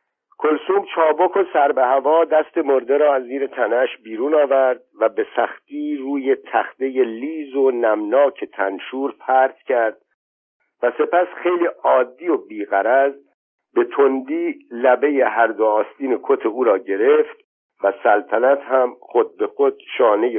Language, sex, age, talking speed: Persian, male, 50-69, 140 wpm